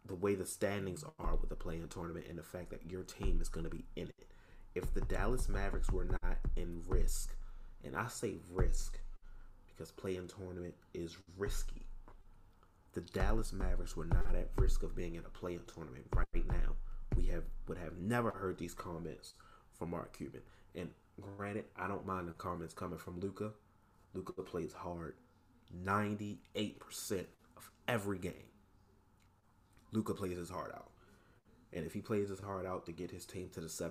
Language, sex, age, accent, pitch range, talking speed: English, male, 30-49, American, 90-105 Hz, 175 wpm